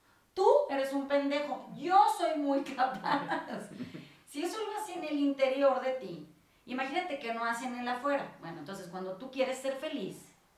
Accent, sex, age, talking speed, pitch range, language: Mexican, female, 30-49, 170 wpm, 200-265 Hz, Spanish